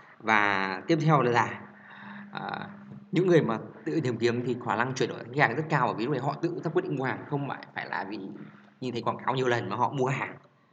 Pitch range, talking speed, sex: 120-160 Hz, 245 wpm, male